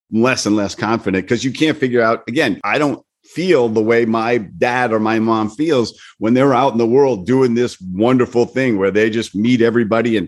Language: English